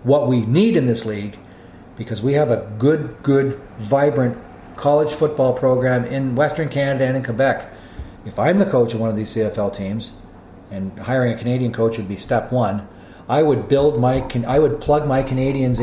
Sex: male